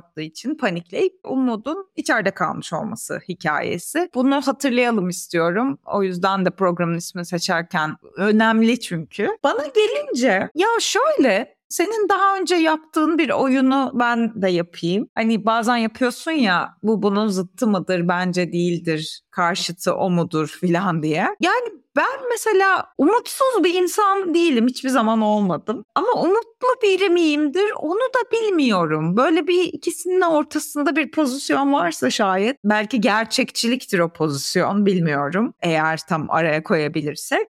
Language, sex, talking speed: Turkish, female, 130 wpm